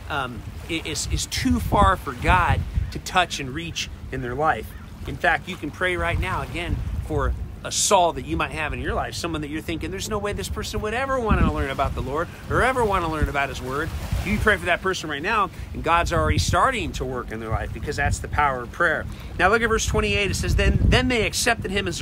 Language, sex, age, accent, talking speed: English, male, 40-59, American, 245 wpm